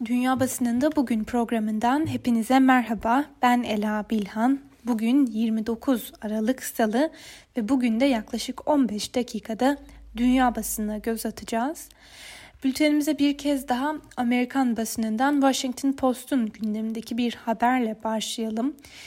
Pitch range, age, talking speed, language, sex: 220-270 Hz, 10-29, 110 wpm, Turkish, female